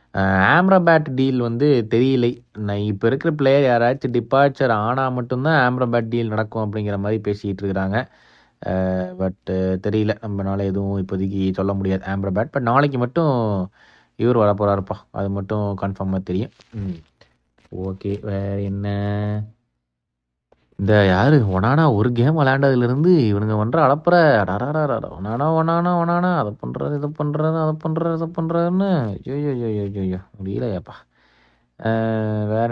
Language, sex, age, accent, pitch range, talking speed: Tamil, male, 20-39, native, 105-145 Hz, 120 wpm